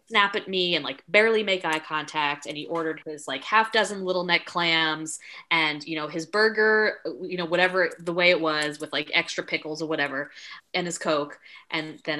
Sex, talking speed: female, 205 wpm